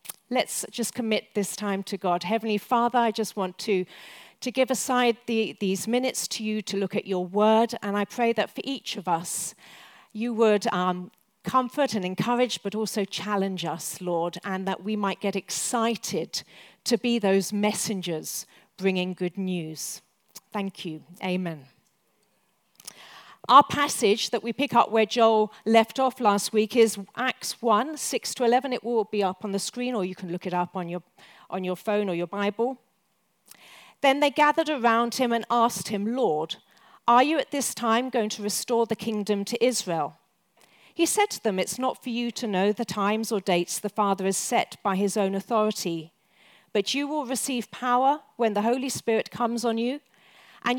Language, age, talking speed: English, 40-59, 185 wpm